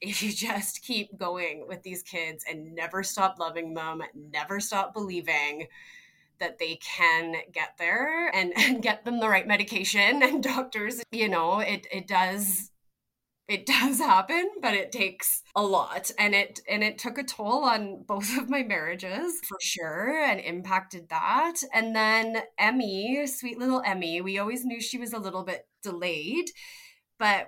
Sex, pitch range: female, 175-240 Hz